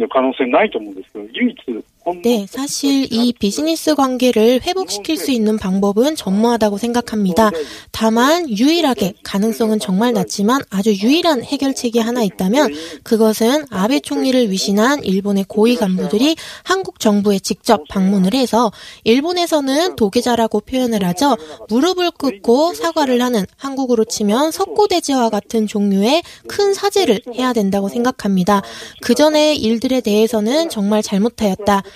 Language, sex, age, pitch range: Korean, female, 20-39, 205-285 Hz